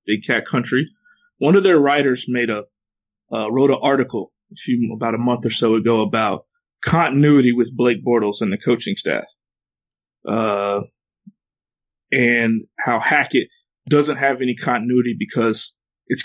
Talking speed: 150 wpm